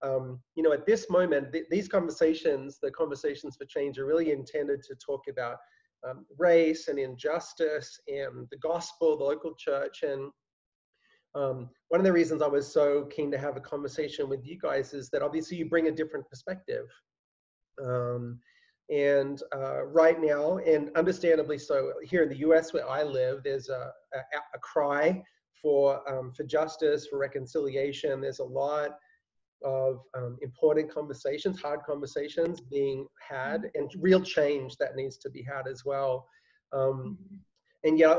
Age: 30-49